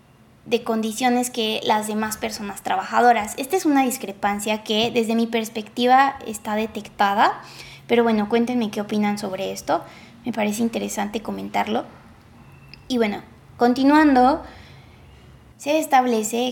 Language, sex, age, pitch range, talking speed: English, female, 20-39, 215-255 Hz, 120 wpm